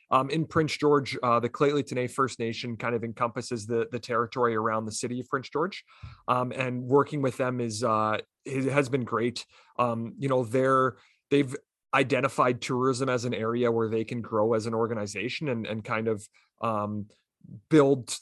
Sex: male